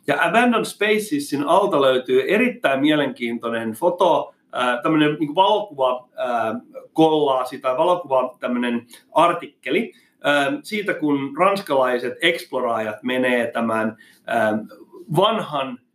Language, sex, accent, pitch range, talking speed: Finnish, male, native, 125-190 Hz, 75 wpm